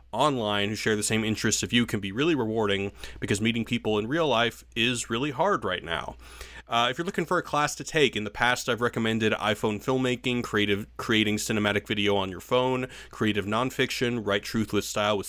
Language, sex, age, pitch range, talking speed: English, male, 30-49, 105-125 Hz, 205 wpm